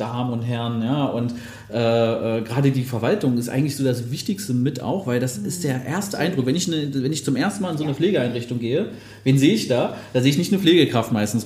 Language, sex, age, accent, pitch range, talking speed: German, male, 30-49, German, 115-135 Hz, 245 wpm